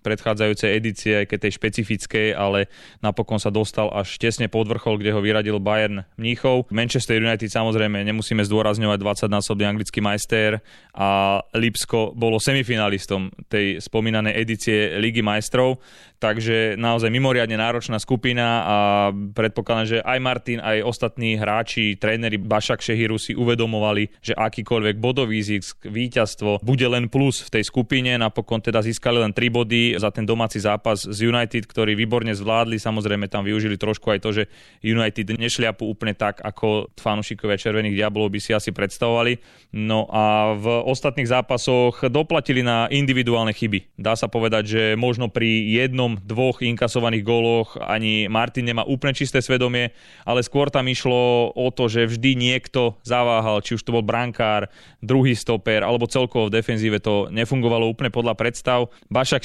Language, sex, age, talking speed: Slovak, male, 20-39, 150 wpm